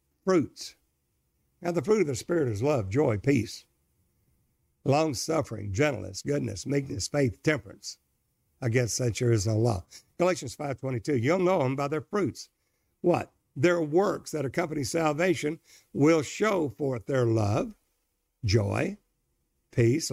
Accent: American